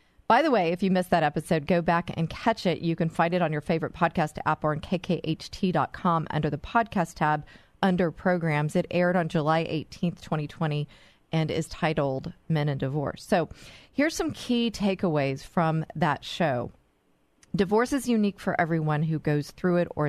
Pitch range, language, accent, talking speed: 150-190 Hz, English, American, 180 wpm